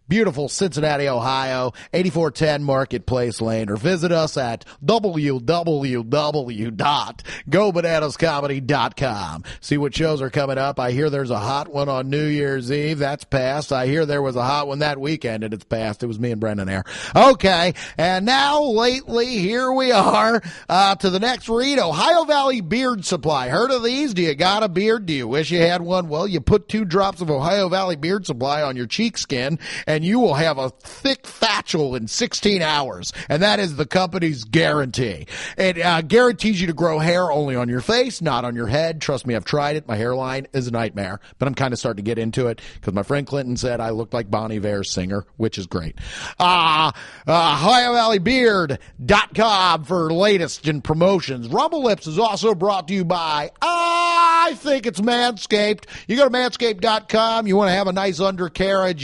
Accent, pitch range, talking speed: American, 130-200 Hz, 190 wpm